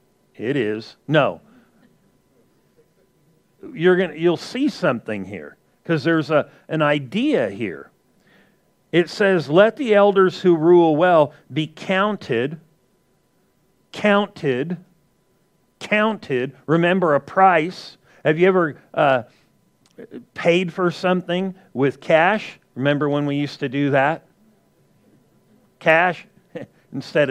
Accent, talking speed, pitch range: American, 110 wpm, 155-195 Hz